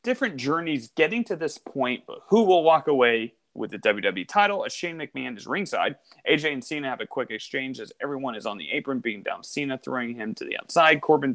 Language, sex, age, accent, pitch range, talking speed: English, male, 30-49, American, 125-165 Hz, 220 wpm